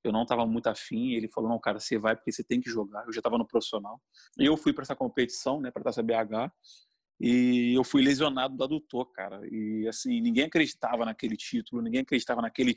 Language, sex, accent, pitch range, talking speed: Portuguese, male, Brazilian, 120-170 Hz, 220 wpm